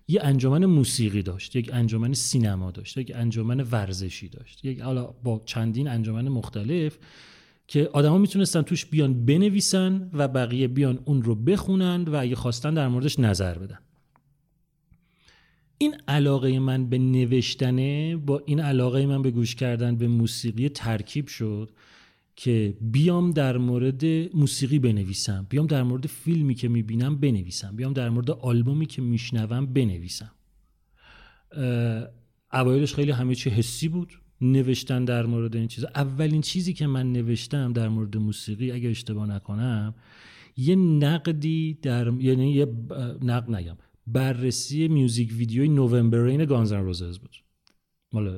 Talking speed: 140 wpm